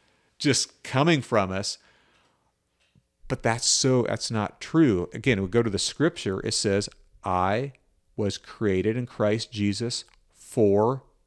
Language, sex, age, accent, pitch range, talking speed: English, male, 50-69, American, 105-135 Hz, 130 wpm